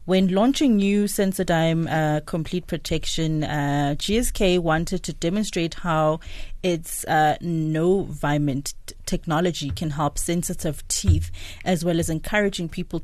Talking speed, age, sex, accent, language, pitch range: 120 wpm, 20-39, female, South African, English, 160-195 Hz